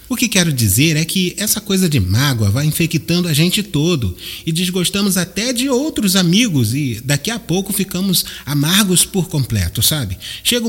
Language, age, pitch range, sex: Portuguese, 30-49, 115-190 Hz, male